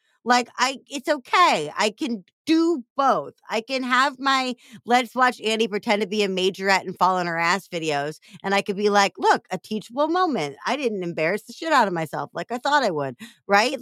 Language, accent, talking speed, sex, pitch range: English, American, 215 wpm, female, 180-250 Hz